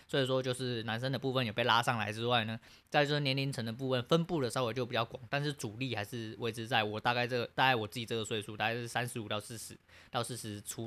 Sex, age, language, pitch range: male, 20-39, Chinese, 110-130 Hz